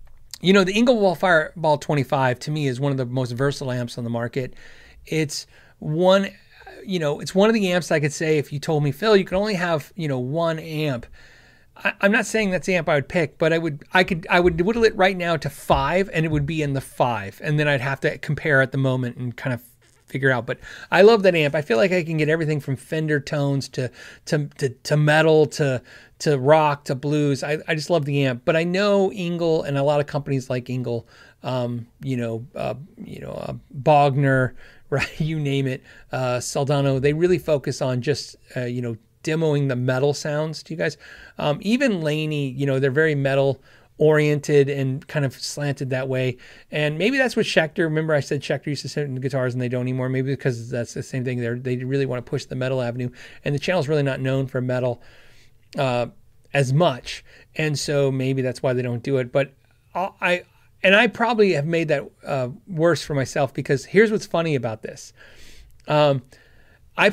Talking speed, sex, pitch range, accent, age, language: 220 wpm, male, 130-165 Hz, American, 30-49, English